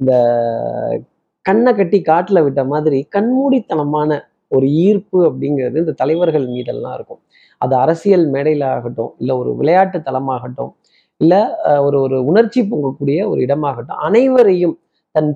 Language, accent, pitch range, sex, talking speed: Tamil, native, 140-205 Hz, male, 115 wpm